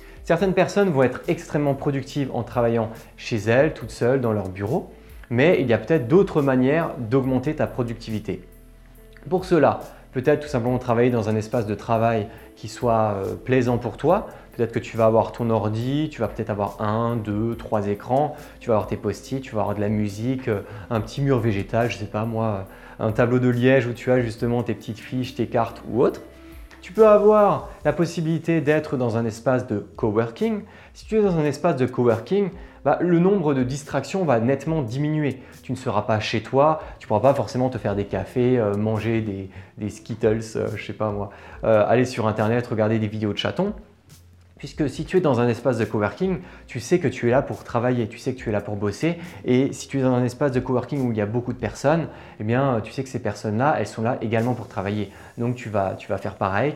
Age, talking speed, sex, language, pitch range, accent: 20-39, 225 wpm, male, French, 110-140 Hz, French